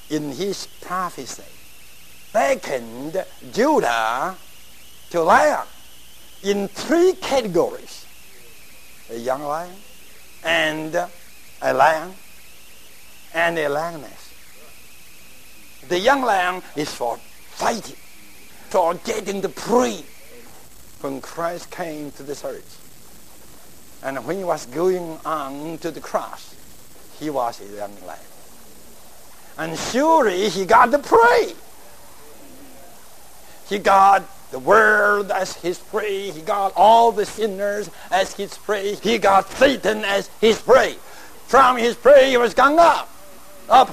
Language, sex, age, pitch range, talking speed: English, male, 60-79, 155-230 Hz, 115 wpm